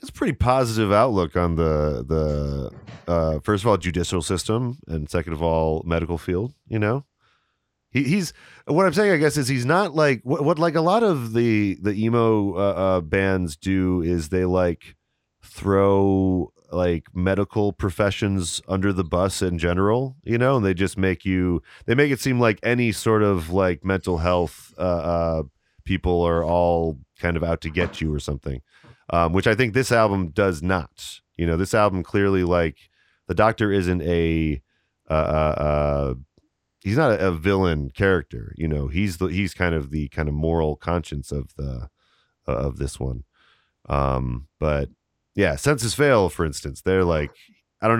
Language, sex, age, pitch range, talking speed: English, male, 30-49, 80-105 Hz, 180 wpm